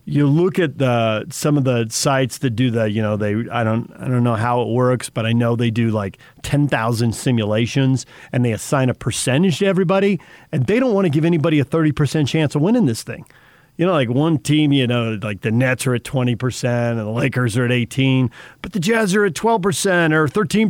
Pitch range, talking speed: 120-155 Hz, 240 wpm